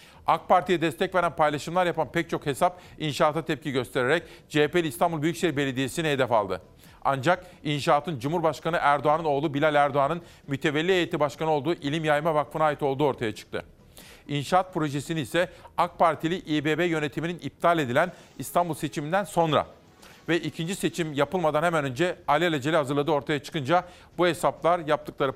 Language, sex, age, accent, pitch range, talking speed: Turkish, male, 50-69, native, 145-170 Hz, 145 wpm